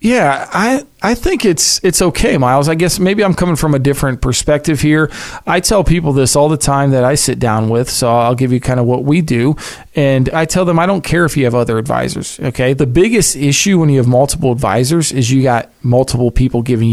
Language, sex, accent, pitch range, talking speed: English, male, American, 125-150 Hz, 235 wpm